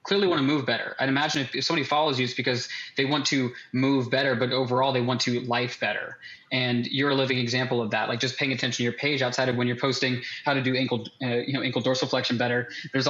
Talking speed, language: 260 wpm, English